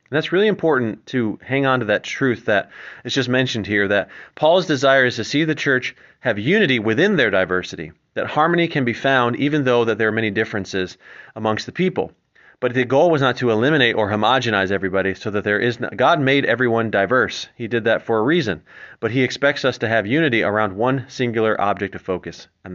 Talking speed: 215 wpm